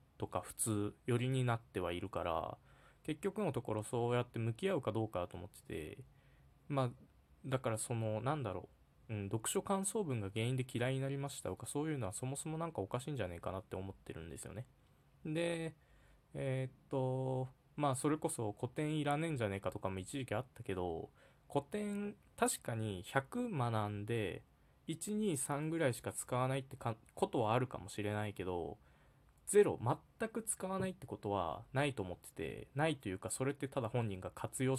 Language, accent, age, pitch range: Japanese, native, 20-39, 110-145 Hz